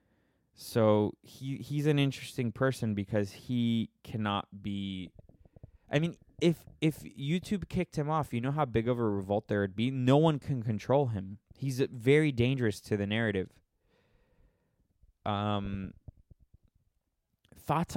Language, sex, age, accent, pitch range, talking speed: English, male, 20-39, American, 100-130 Hz, 135 wpm